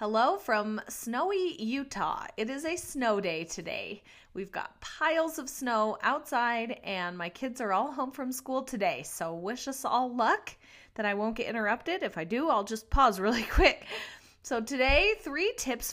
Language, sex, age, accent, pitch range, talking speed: English, female, 30-49, American, 200-265 Hz, 175 wpm